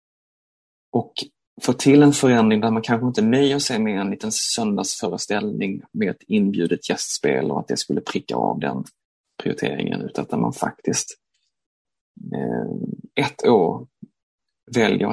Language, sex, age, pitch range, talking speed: Swedish, male, 30-49, 110-135 Hz, 135 wpm